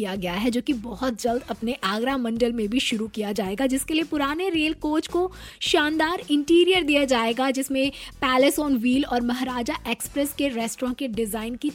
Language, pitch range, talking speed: Hindi, 230-295 Hz, 190 wpm